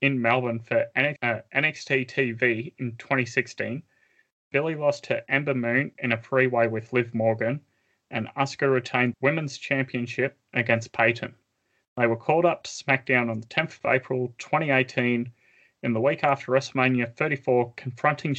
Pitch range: 120-140 Hz